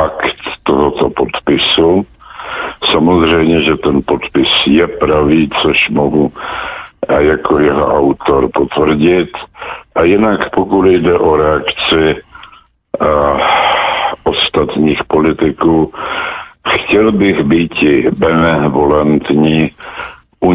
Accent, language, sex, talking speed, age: native, Czech, male, 80 wpm, 70-89